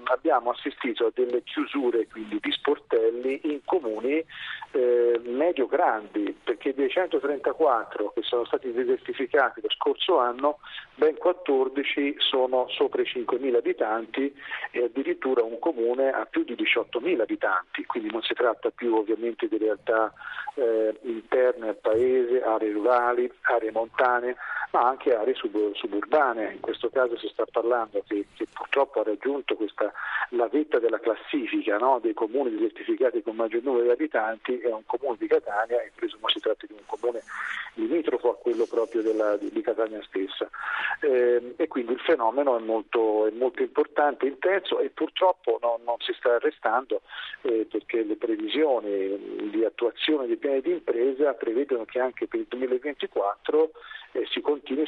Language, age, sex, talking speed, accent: Italian, 40-59, male, 155 wpm, native